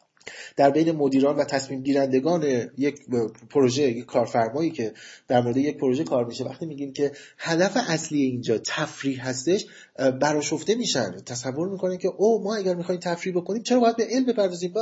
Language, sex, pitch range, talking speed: Persian, male, 135-190 Hz, 160 wpm